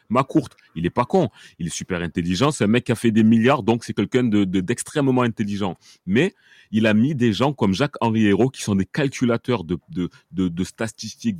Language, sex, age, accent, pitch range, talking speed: French, male, 30-49, French, 100-130 Hz, 220 wpm